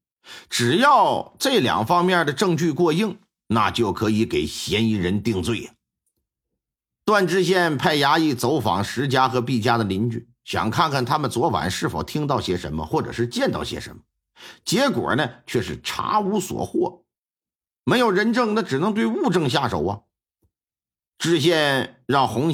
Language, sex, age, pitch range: Chinese, male, 50-69, 120-195 Hz